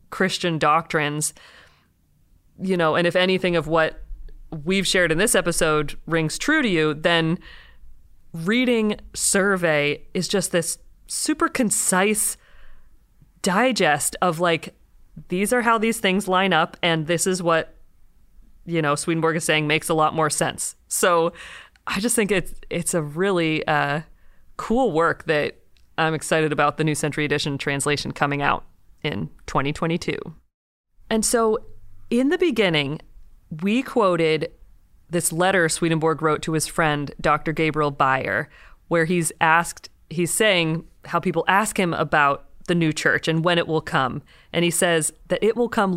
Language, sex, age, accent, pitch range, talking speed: English, female, 30-49, American, 155-190 Hz, 150 wpm